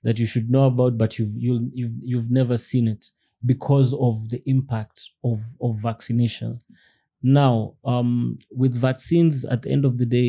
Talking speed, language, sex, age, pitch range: 175 wpm, English, male, 30-49, 110-125 Hz